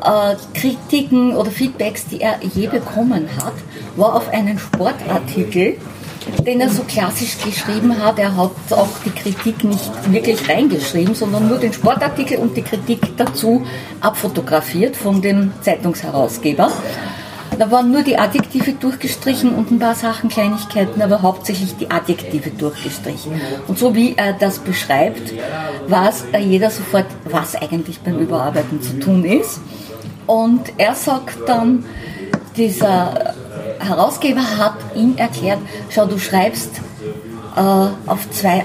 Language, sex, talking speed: German, female, 130 wpm